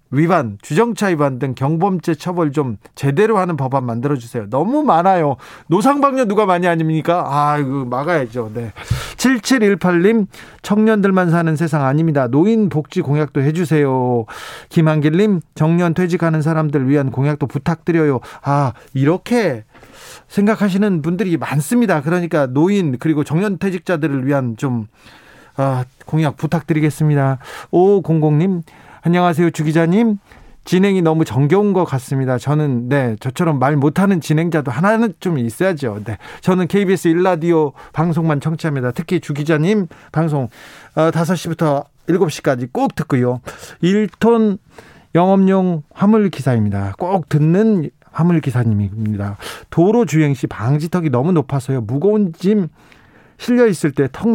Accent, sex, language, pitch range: native, male, Korean, 140-185 Hz